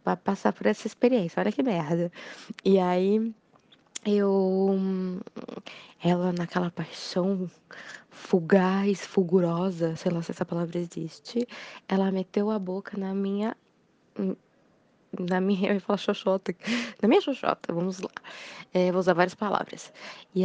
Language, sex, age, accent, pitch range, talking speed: Portuguese, female, 20-39, Brazilian, 180-220 Hz, 130 wpm